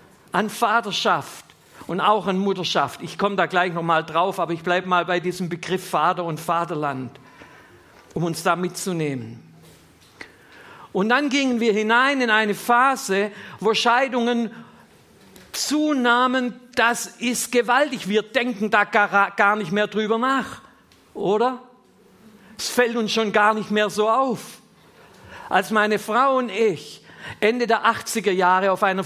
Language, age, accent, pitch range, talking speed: German, 50-69, German, 180-240 Hz, 145 wpm